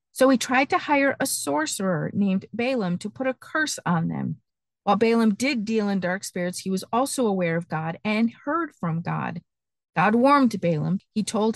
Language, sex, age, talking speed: English, female, 50-69, 190 wpm